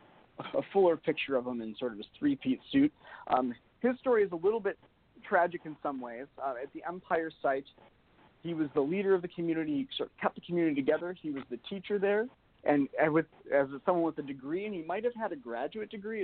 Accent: American